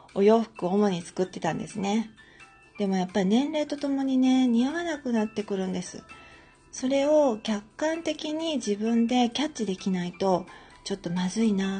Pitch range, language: 195-265 Hz, Japanese